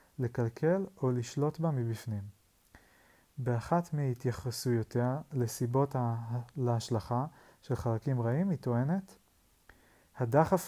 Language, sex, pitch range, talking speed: Hebrew, male, 120-150 Hz, 85 wpm